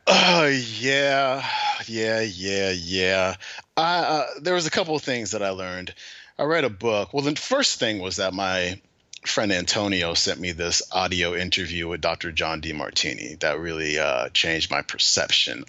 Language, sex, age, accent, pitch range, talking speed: English, male, 30-49, American, 90-110 Hz, 175 wpm